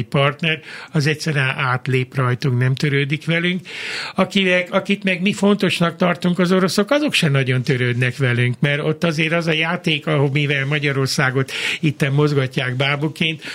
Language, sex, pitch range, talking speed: Hungarian, male, 135-160 Hz, 145 wpm